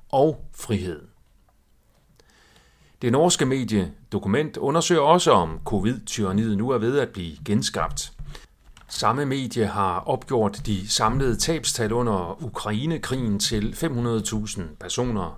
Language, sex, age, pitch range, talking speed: Danish, male, 40-59, 95-140 Hz, 105 wpm